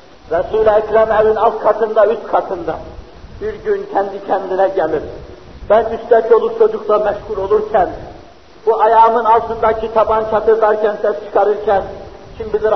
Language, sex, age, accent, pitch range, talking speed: Turkish, male, 50-69, native, 200-235 Hz, 120 wpm